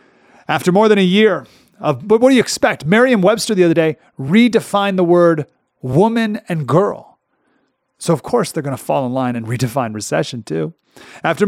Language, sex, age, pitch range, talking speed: English, male, 30-49, 135-200 Hz, 185 wpm